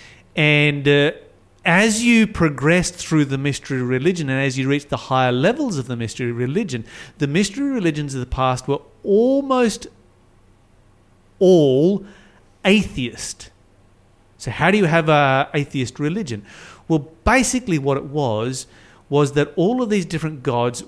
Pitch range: 120-155 Hz